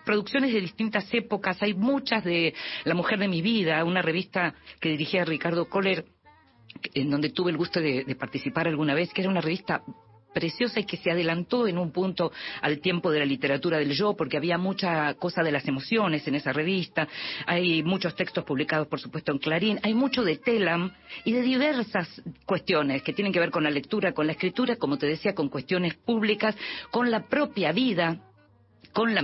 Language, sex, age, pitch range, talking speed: Spanish, female, 40-59, 155-215 Hz, 195 wpm